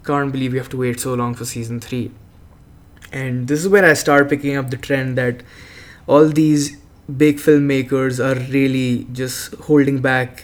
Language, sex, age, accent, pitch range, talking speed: English, male, 20-39, Indian, 125-140 Hz, 180 wpm